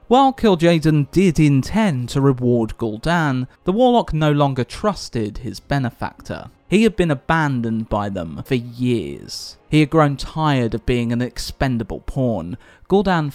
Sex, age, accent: male, 30-49, British